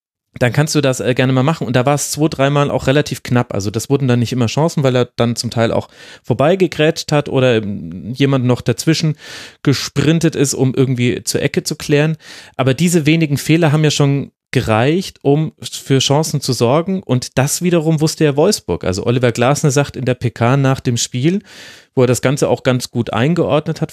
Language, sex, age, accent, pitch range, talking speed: German, male, 30-49, German, 120-150 Hz, 205 wpm